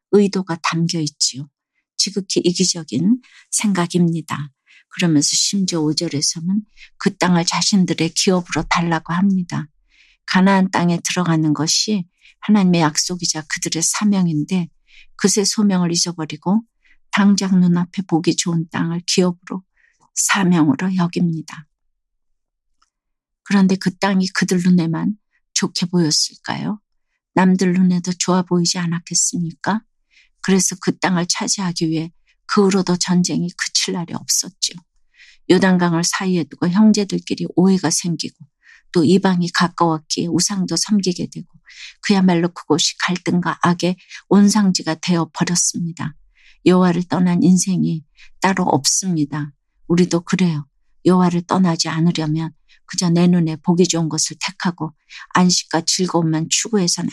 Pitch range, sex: 160-190 Hz, female